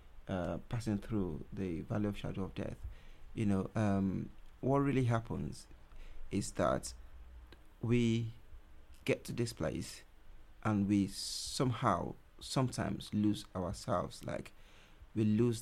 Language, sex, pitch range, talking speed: English, male, 100-120 Hz, 120 wpm